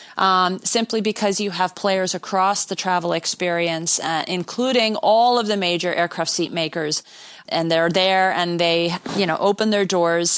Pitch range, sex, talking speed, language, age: 175-225 Hz, female, 170 wpm, English, 40-59